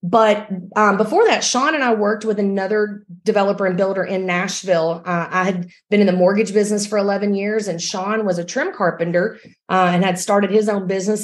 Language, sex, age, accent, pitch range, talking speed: English, female, 30-49, American, 180-210 Hz, 210 wpm